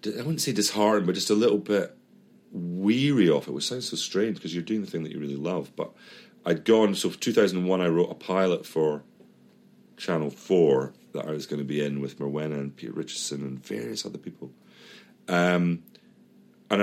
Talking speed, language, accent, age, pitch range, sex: 200 wpm, English, British, 40-59, 75-105 Hz, male